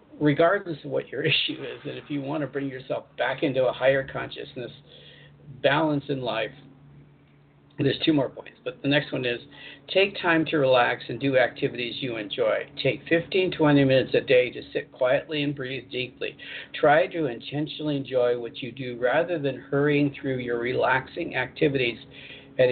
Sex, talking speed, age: male, 170 wpm, 50-69